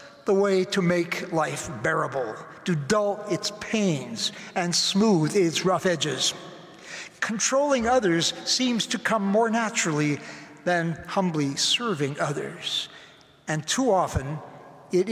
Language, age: English, 60-79